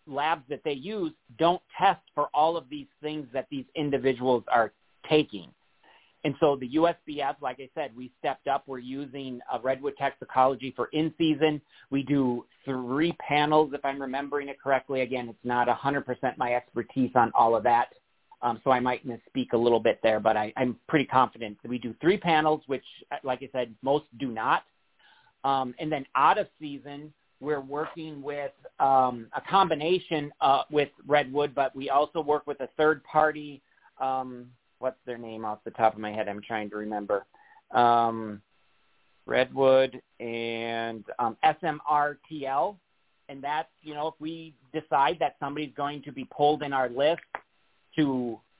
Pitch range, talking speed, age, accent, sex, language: 125-150 Hz, 175 wpm, 40-59, American, male, English